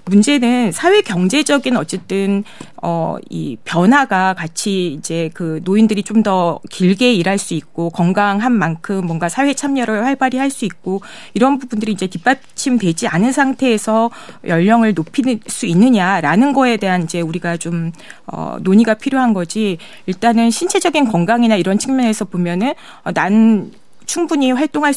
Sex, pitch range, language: female, 180-240 Hz, Korean